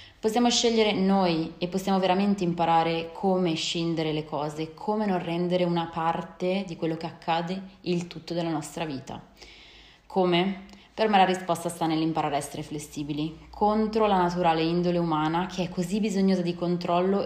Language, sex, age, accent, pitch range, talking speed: Italian, female, 20-39, native, 155-185 Hz, 160 wpm